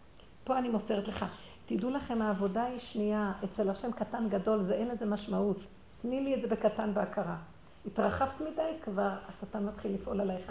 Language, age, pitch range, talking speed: Hebrew, 60-79, 200-235 Hz, 170 wpm